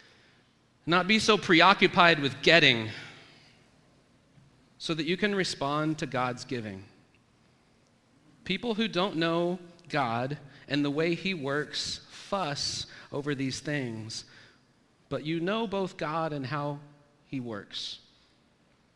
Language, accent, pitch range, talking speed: English, American, 110-150 Hz, 115 wpm